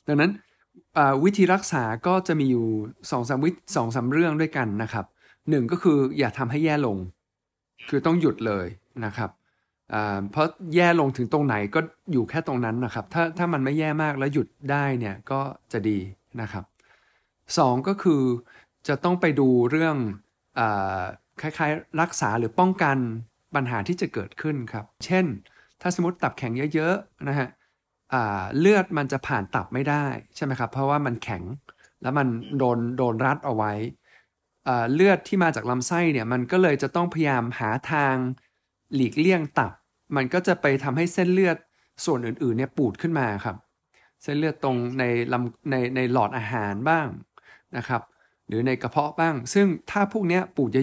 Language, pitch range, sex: Thai, 120-160 Hz, male